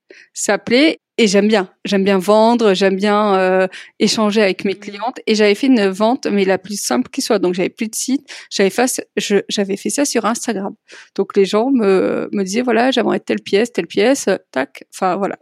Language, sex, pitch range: French, female, 205-250 Hz